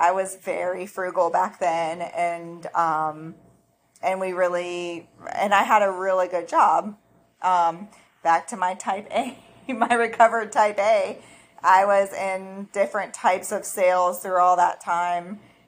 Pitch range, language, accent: 175-200 Hz, English, American